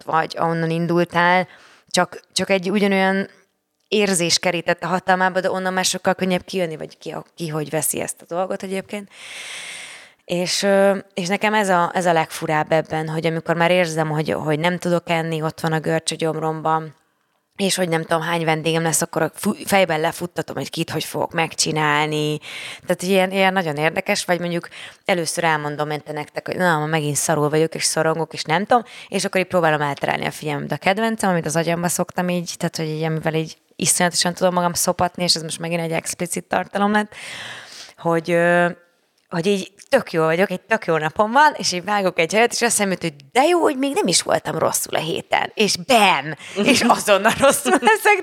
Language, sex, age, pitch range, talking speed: Hungarian, female, 20-39, 160-195 Hz, 185 wpm